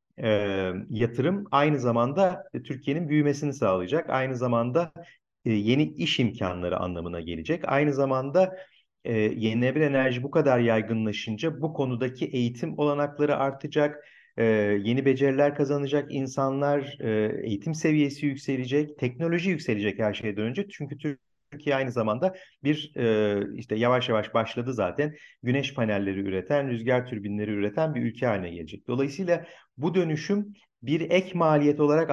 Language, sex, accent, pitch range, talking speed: Turkish, male, native, 110-150 Hz, 135 wpm